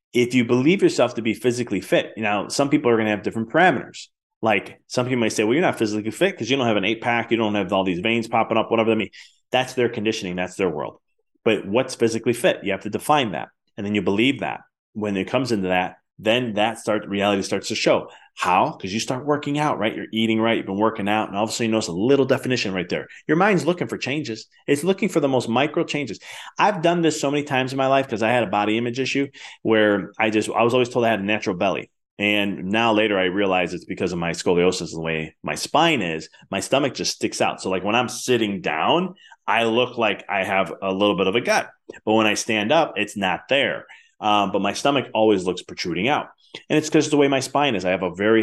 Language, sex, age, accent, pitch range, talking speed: English, male, 30-49, American, 100-130 Hz, 260 wpm